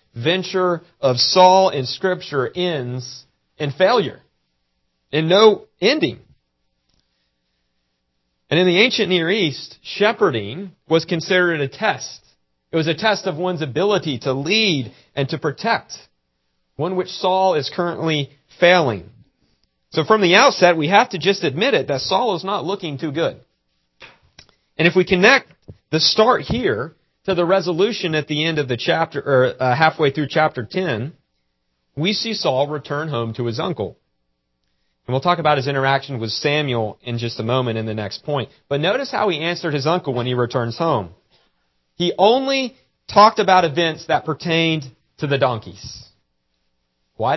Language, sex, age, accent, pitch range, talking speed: English, male, 40-59, American, 110-175 Hz, 160 wpm